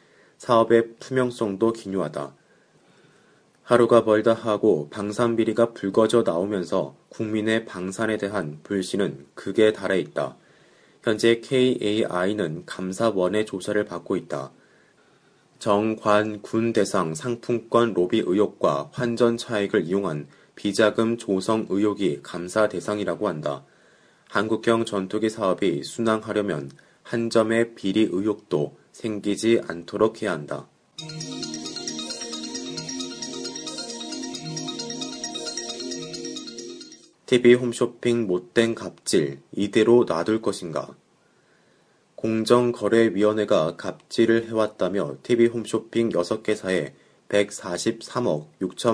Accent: native